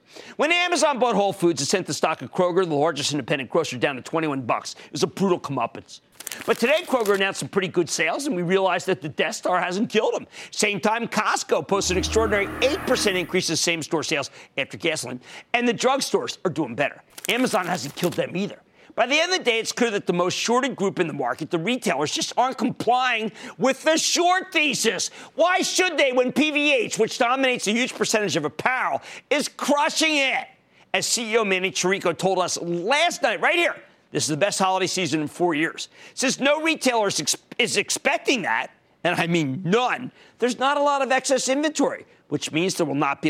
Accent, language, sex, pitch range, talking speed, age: American, English, male, 175-265 Hz, 205 wpm, 50-69